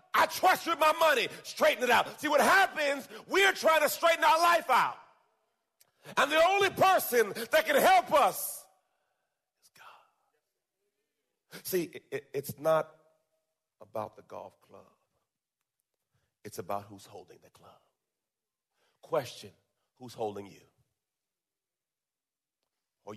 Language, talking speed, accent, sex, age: English, 125 wpm, American, male, 40-59